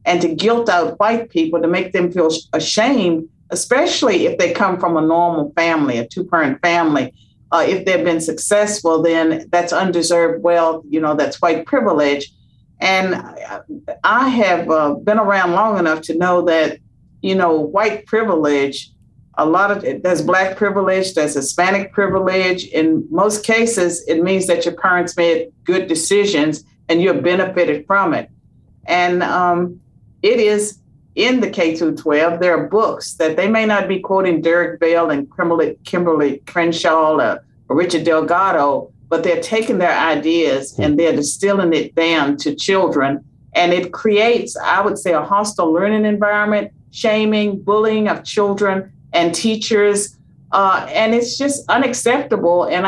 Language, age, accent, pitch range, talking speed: English, 50-69, American, 160-205 Hz, 155 wpm